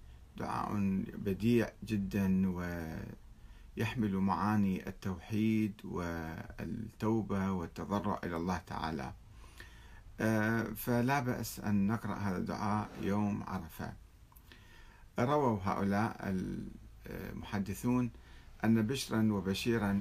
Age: 50-69